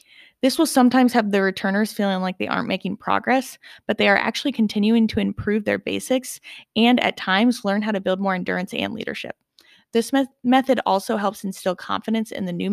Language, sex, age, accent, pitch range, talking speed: English, female, 20-39, American, 190-240 Hz, 195 wpm